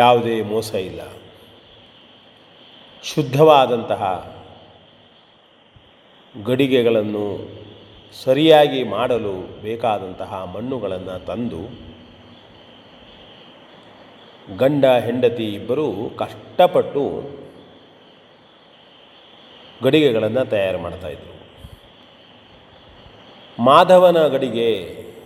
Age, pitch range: 30-49, 105-140 Hz